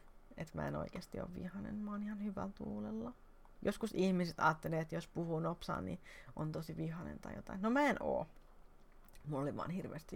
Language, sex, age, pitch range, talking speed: Finnish, female, 30-49, 155-195 Hz, 185 wpm